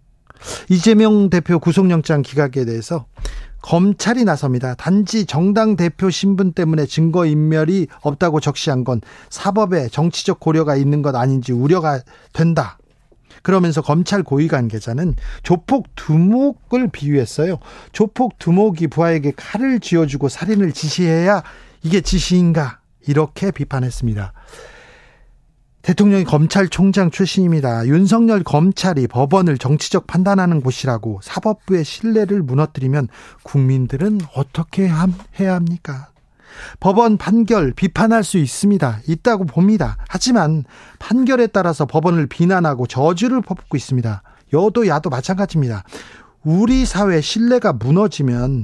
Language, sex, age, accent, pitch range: Korean, male, 40-59, native, 140-195 Hz